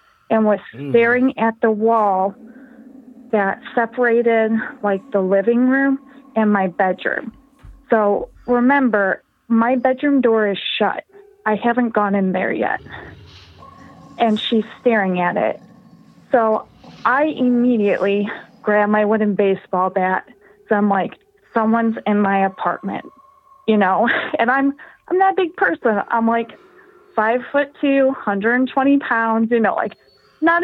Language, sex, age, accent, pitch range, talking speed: English, female, 30-49, American, 210-265 Hz, 130 wpm